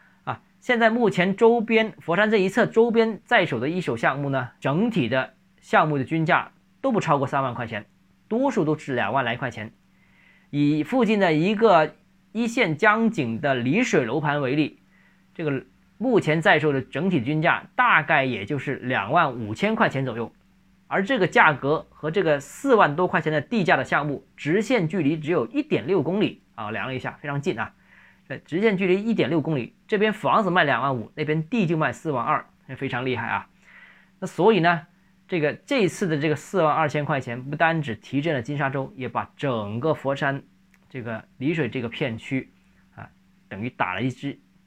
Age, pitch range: 20-39, 130-190 Hz